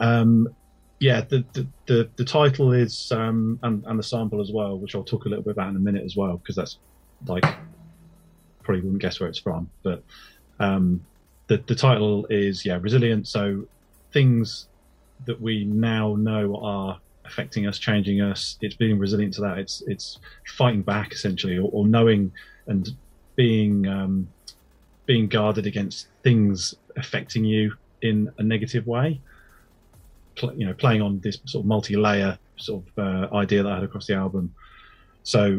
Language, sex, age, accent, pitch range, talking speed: English, male, 30-49, British, 100-120 Hz, 170 wpm